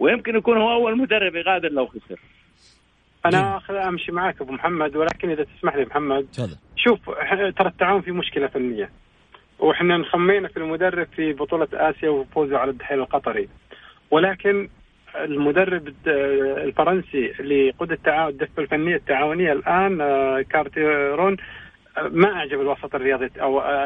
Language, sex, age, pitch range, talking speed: Arabic, male, 40-59, 150-195 Hz, 125 wpm